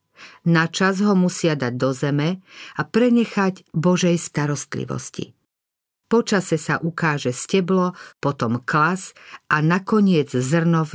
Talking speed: 120 wpm